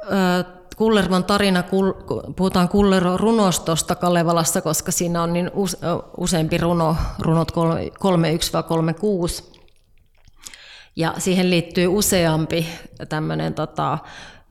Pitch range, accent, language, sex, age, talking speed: 160-180 Hz, native, Finnish, female, 30-49, 85 wpm